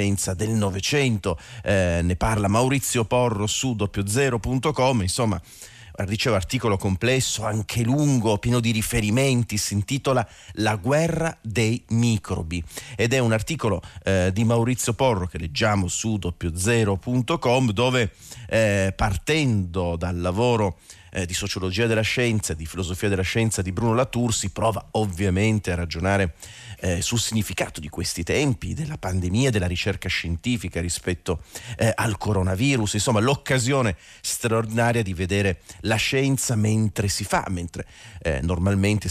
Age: 40-59